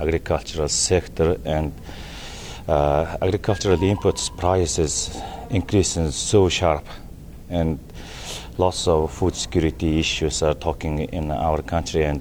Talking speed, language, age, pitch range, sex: 110 wpm, English, 40-59, 75-85 Hz, male